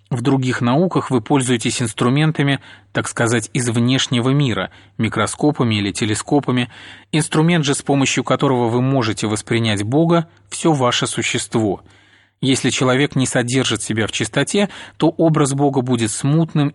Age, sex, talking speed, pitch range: 30-49, male, 135 wpm, 110-140 Hz